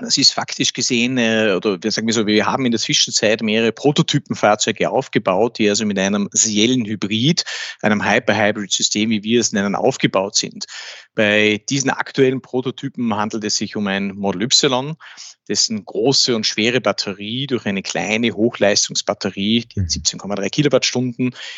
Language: German